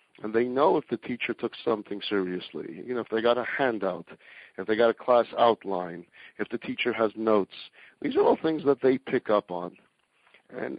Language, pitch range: English, 105-125 Hz